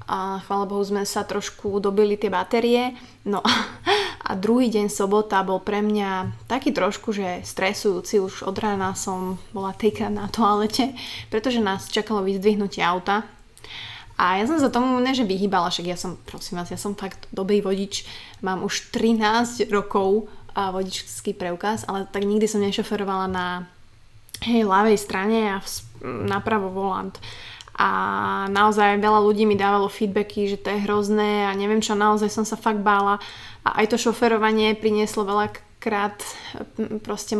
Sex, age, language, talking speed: female, 20-39, Slovak, 155 wpm